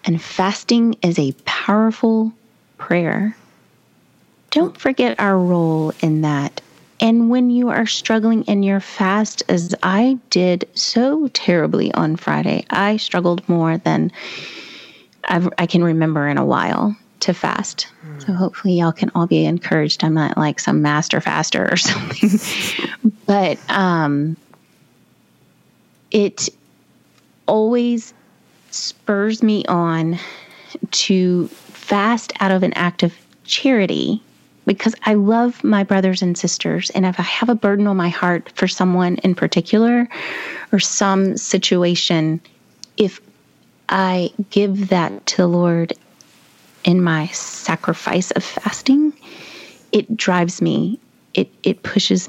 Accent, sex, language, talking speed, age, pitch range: American, female, English, 125 wpm, 30-49, 175-215 Hz